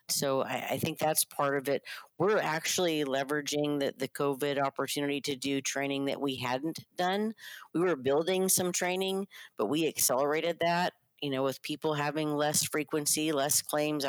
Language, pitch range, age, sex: English, 140-155 Hz, 50-69, female